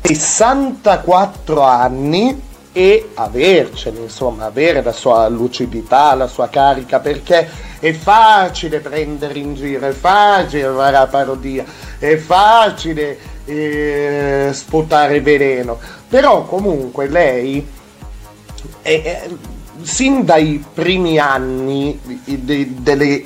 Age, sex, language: 30-49, male, Italian